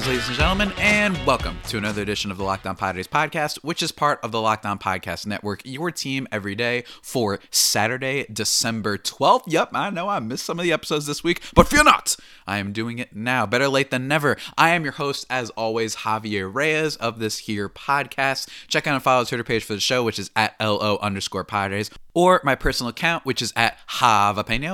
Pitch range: 110-155 Hz